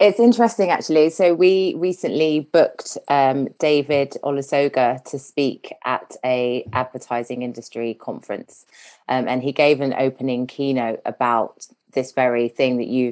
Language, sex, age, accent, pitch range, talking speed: English, female, 30-49, British, 125-145 Hz, 135 wpm